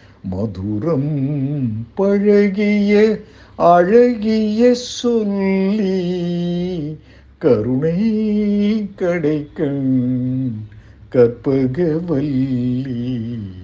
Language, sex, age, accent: Tamil, male, 60-79, native